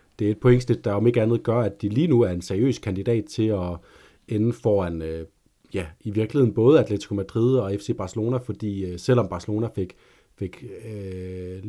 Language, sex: Danish, male